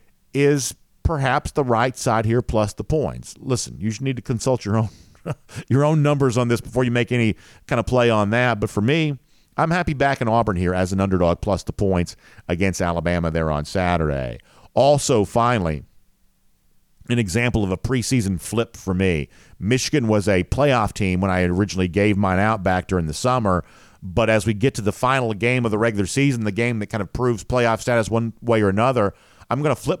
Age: 50-69